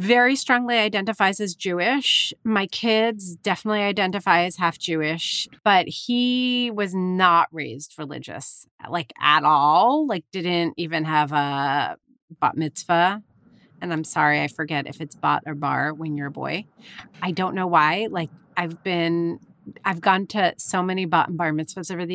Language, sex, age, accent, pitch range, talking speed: English, female, 30-49, American, 165-210 Hz, 165 wpm